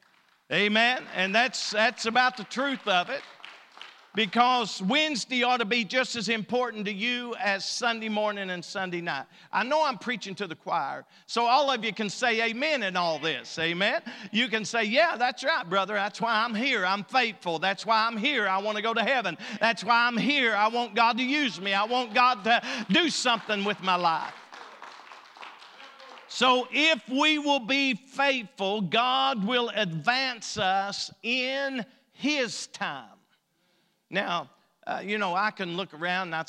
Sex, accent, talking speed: male, American, 180 wpm